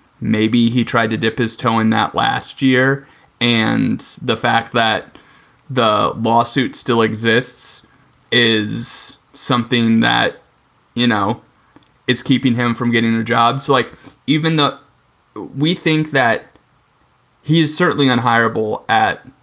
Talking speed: 135 wpm